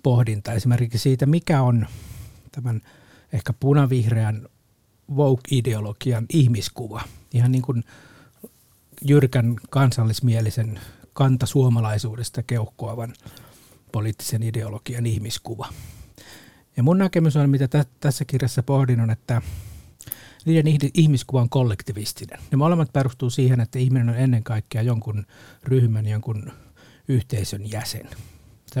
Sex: male